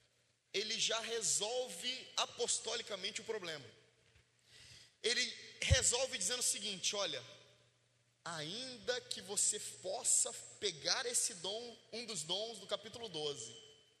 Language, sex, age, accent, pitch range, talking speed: Portuguese, male, 20-39, Brazilian, 145-245 Hz, 105 wpm